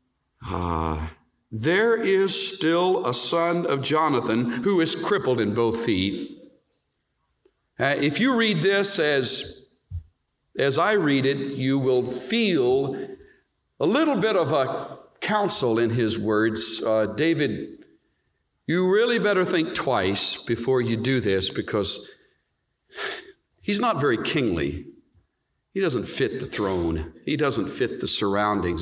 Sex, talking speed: male, 130 wpm